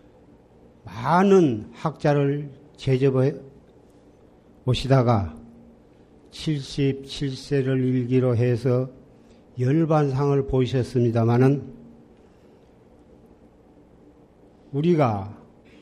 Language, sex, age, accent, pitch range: Korean, male, 50-69, native, 120-155 Hz